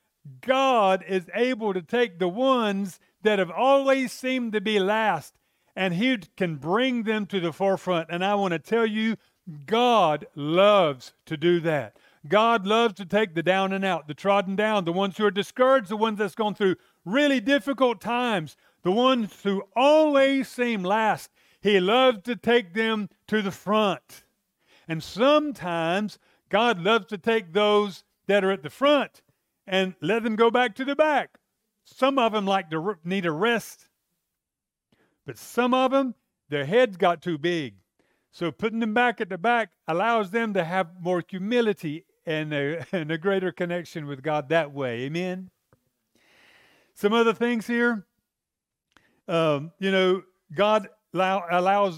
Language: English